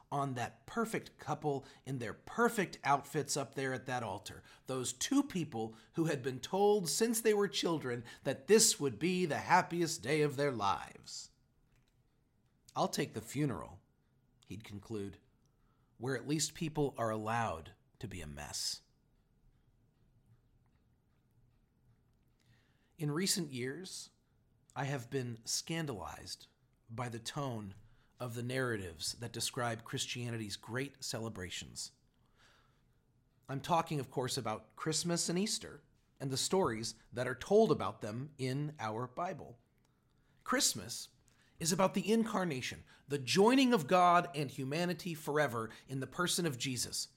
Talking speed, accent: 130 wpm, American